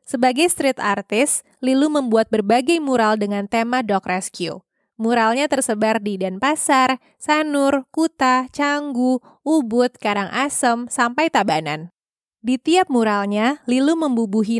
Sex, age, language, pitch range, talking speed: female, 20-39, Indonesian, 215-290 Hz, 110 wpm